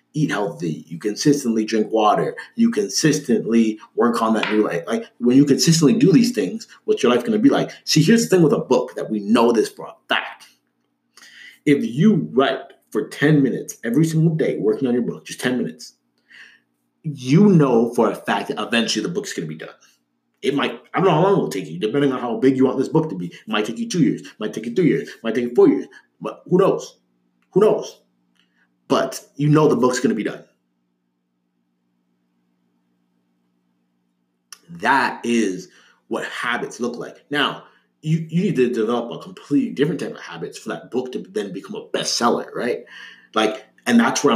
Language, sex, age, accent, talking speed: English, male, 30-49, American, 205 wpm